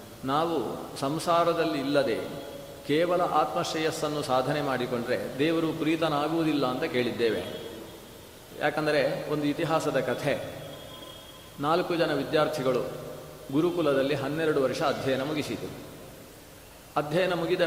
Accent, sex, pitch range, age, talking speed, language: native, male, 135-165 Hz, 40-59, 85 wpm, Kannada